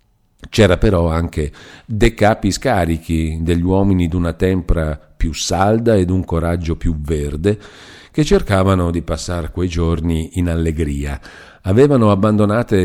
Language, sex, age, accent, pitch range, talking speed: Italian, male, 50-69, native, 80-105 Hz, 120 wpm